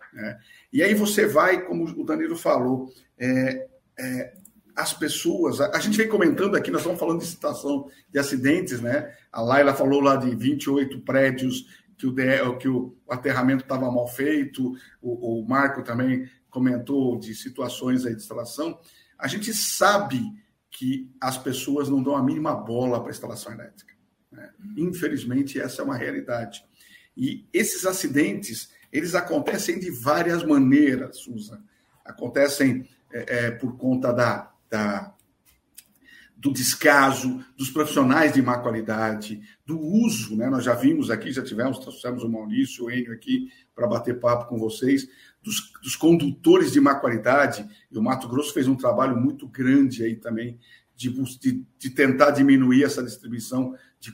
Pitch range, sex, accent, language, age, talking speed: 125-160 Hz, male, Brazilian, Portuguese, 50-69, 155 wpm